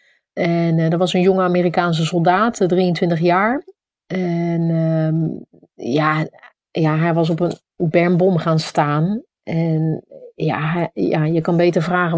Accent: Dutch